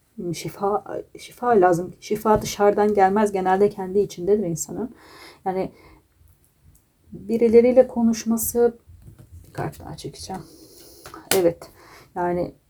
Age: 30-49